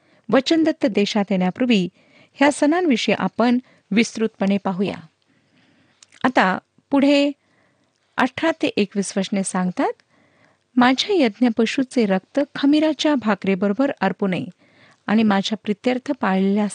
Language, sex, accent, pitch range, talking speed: Marathi, female, native, 200-275 Hz, 95 wpm